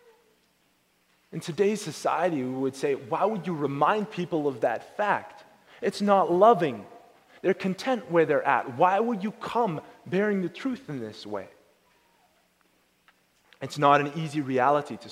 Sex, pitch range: male, 160-220 Hz